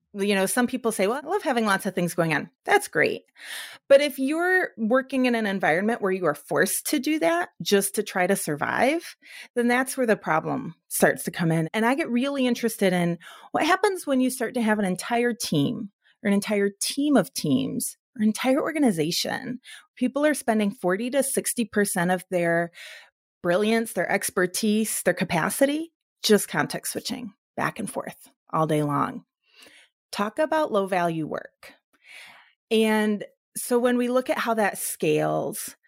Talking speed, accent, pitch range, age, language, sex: 175 wpm, American, 185-255 Hz, 30-49, English, female